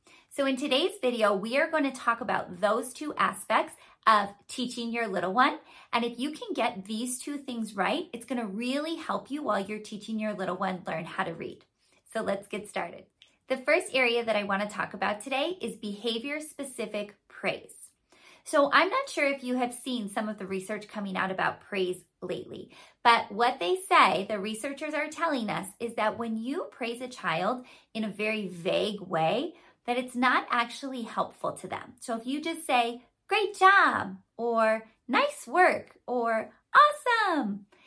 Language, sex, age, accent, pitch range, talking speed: English, female, 30-49, American, 210-280 Hz, 185 wpm